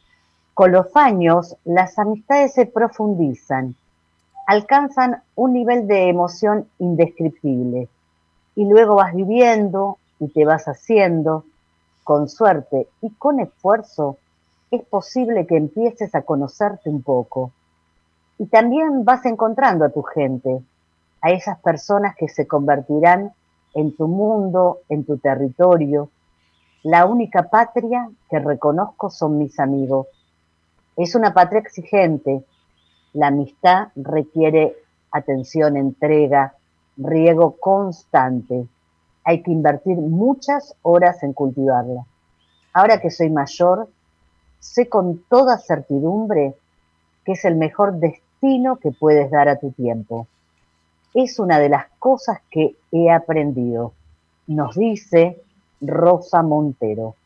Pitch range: 135-200 Hz